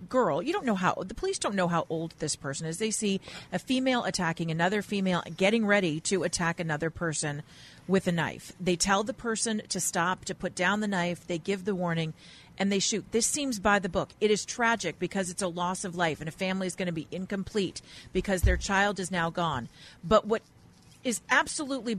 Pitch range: 185-250 Hz